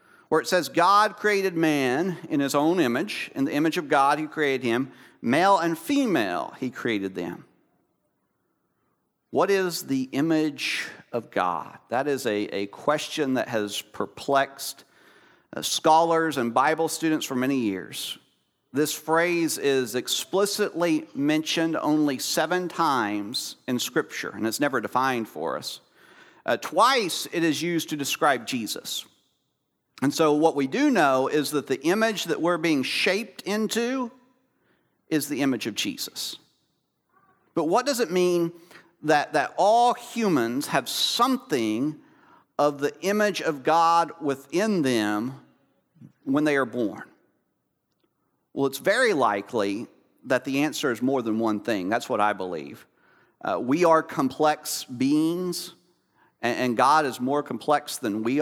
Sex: male